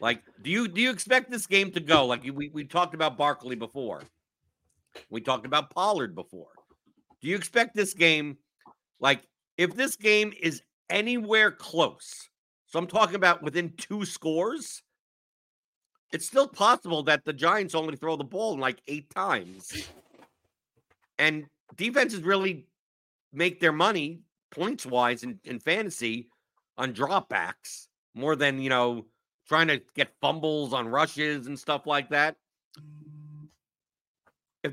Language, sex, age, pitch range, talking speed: English, male, 50-69, 135-180 Hz, 145 wpm